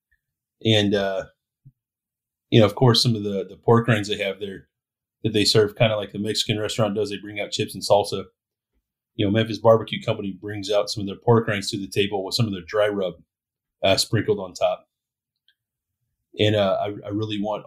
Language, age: English, 30-49